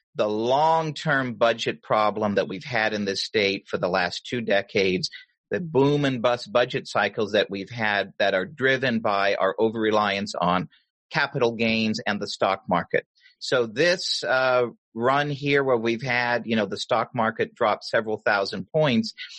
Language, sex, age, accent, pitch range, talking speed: English, male, 40-59, American, 105-150 Hz, 165 wpm